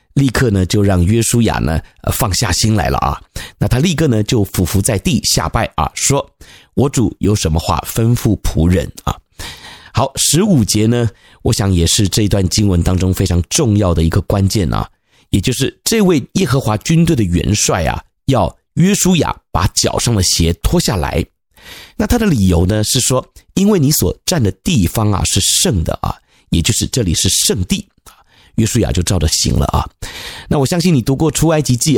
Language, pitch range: Chinese, 95-135 Hz